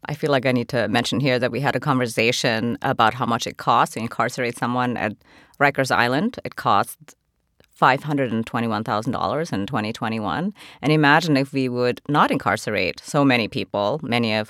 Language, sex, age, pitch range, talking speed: English, female, 30-49, 120-175 Hz, 170 wpm